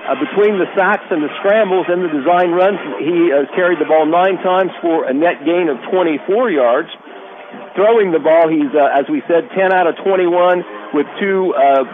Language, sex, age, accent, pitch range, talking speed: English, male, 50-69, American, 150-190 Hz, 205 wpm